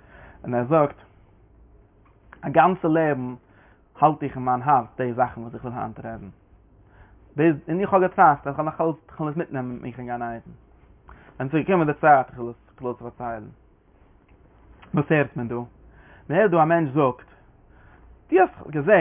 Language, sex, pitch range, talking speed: English, male, 125-165 Hz, 105 wpm